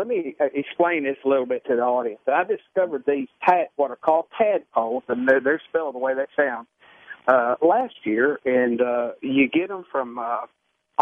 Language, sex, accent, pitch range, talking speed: English, male, American, 130-170 Hz, 190 wpm